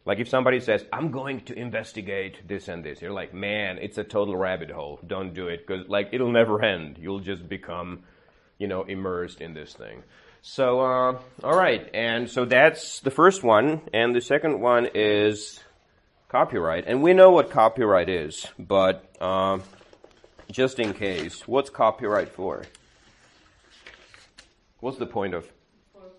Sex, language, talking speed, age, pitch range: male, Czech, 160 wpm, 30-49, 95-125 Hz